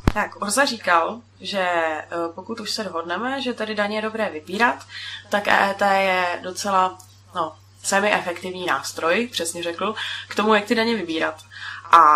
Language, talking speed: Czech, 145 wpm